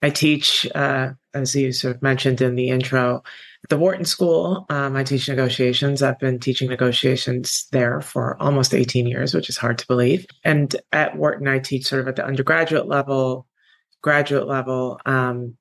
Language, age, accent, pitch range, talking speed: English, 30-49, American, 130-140 Hz, 180 wpm